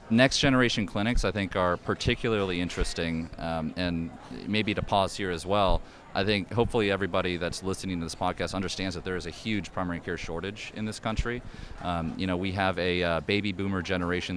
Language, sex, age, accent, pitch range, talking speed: English, male, 30-49, American, 85-100 Hz, 195 wpm